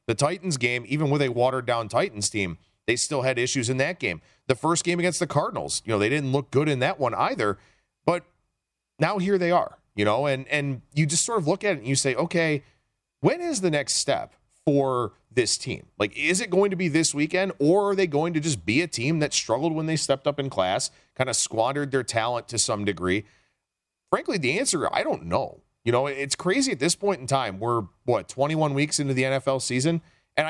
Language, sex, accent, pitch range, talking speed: English, male, American, 115-155 Hz, 230 wpm